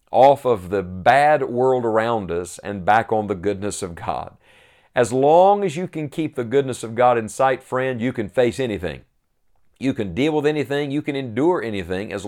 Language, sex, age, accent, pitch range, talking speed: English, male, 50-69, American, 100-130 Hz, 200 wpm